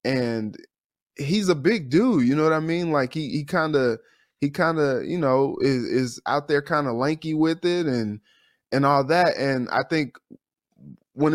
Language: English